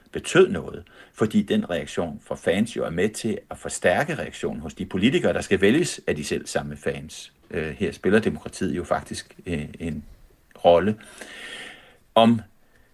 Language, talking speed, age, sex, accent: Danish, 160 wpm, 60-79, male, native